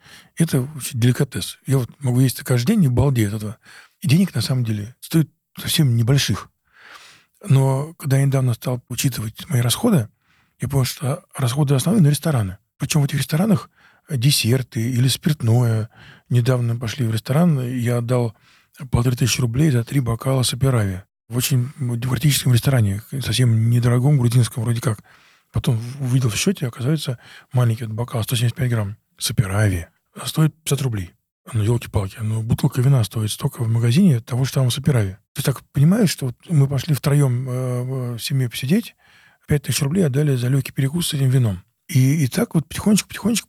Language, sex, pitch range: Russian, male, 120-145 Hz